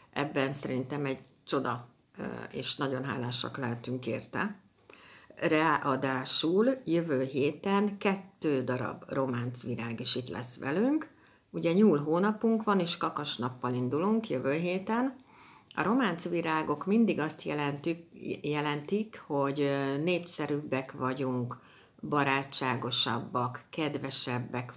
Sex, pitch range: female, 130-170 Hz